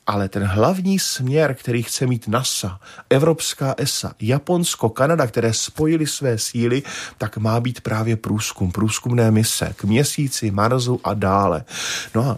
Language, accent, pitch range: Czech, native, 110-135 Hz